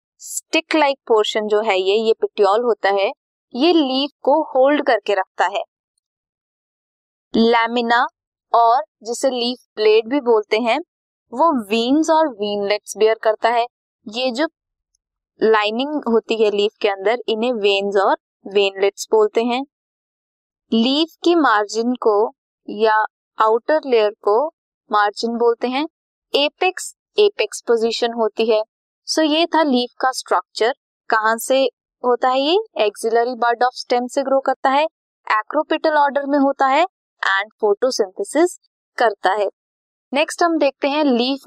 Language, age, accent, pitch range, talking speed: Hindi, 20-39, native, 215-290 Hz, 135 wpm